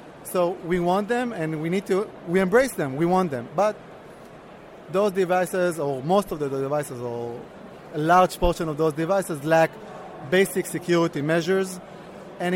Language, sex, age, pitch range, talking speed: English, male, 30-49, 160-190 Hz, 160 wpm